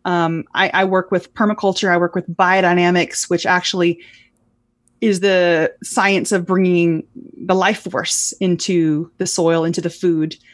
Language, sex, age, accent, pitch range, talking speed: English, female, 30-49, American, 170-205 Hz, 150 wpm